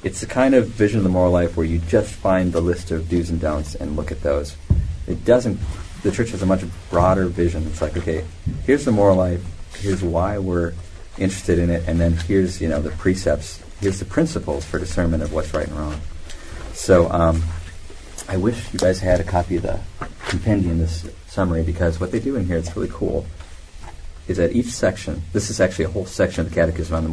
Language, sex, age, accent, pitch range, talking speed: English, male, 40-59, American, 80-95 Hz, 220 wpm